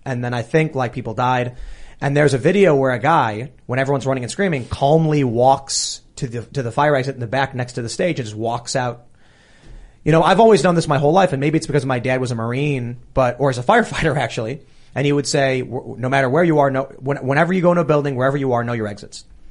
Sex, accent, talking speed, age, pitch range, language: male, American, 260 wpm, 30-49, 120-160 Hz, English